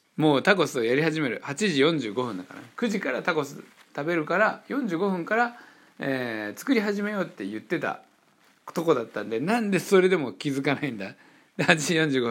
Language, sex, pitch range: Japanese, male, 110-170 Hz